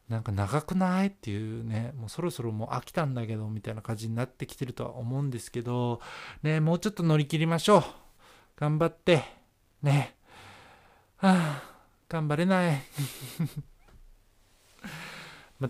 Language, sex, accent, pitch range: Japanese, male, native, 115-150 Hz